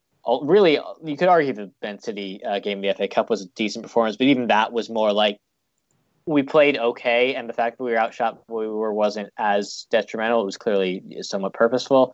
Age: 20-39